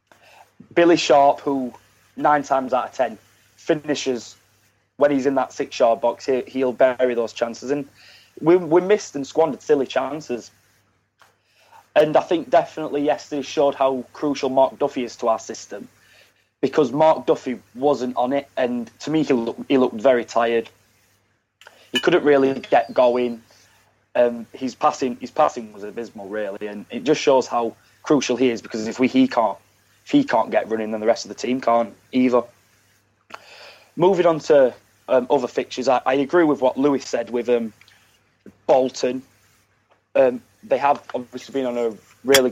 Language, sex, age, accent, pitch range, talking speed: English, male, 20-39, British, 115-140 Hz, 170 wpm